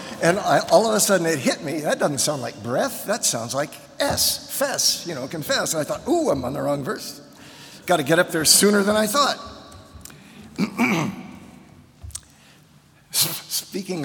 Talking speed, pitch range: 170 wpm, 130-190 Hz